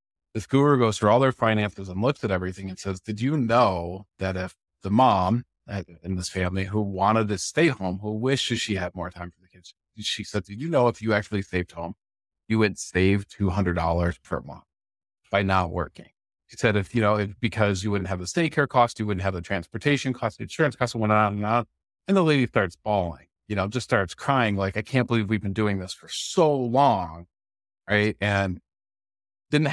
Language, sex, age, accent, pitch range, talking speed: English, male, 40-59, American, 95-115 Hz, 215 wpm